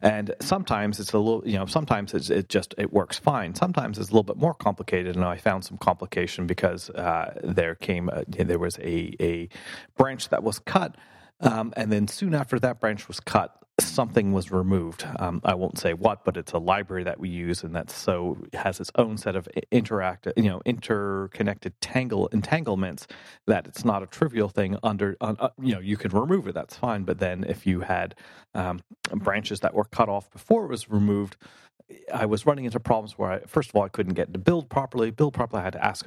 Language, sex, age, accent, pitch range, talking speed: English, male, 30-49, American, 95-115 Hz, 215 wpm